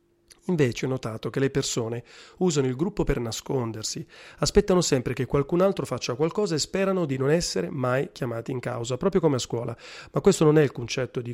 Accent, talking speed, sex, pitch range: native, 200 wpm, male, 125-155 Hz